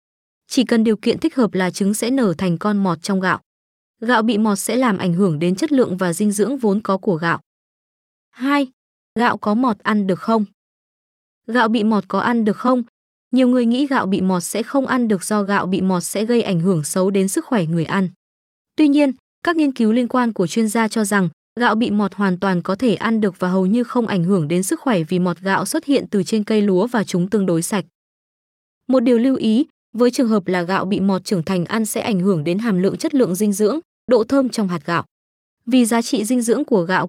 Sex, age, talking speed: female, 20-39, 245 wpm